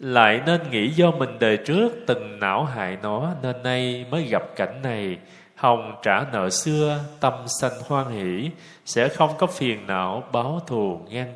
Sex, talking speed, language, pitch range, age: male, 175 wpm, Vietnamese, 115-155 Hz, 20-39